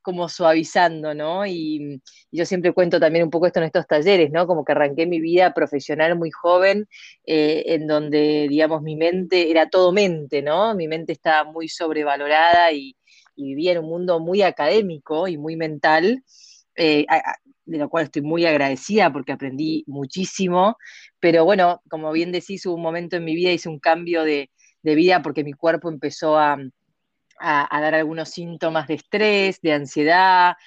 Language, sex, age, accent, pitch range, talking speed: Spanish, female, 20-39, Argentinian, 155-180 Hz, 180 wpm